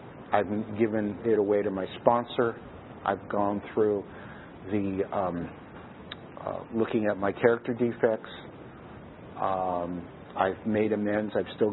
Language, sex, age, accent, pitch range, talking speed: English, male, 50-69, American, 100-115 Hz, 125 wpm